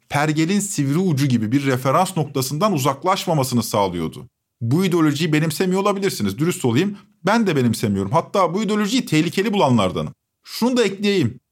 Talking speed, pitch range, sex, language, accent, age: 135 wpm, 135-190 Hz, male, Turkish, native, 50-69